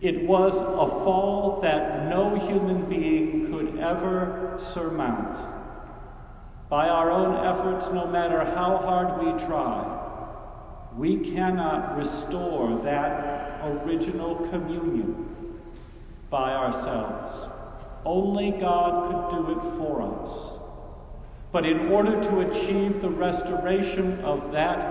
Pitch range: 165-200 Hz